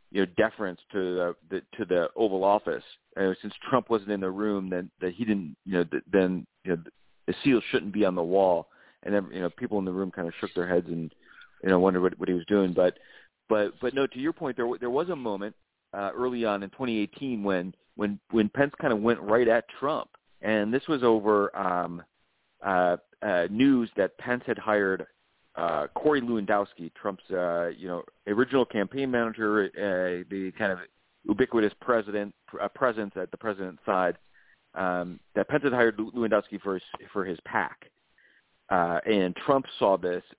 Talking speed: 190 wpm